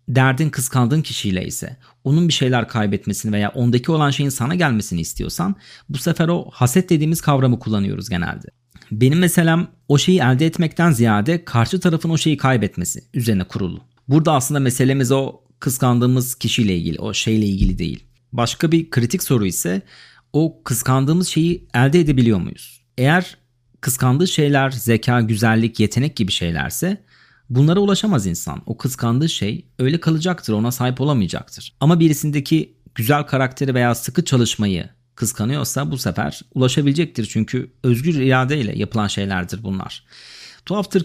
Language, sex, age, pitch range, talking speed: Turkish, male, 40-59, 115-155 Hz, 140 wpm